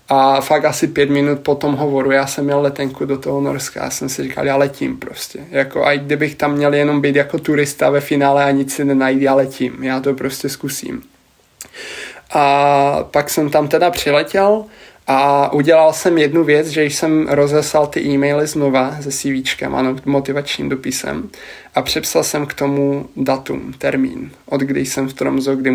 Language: Czech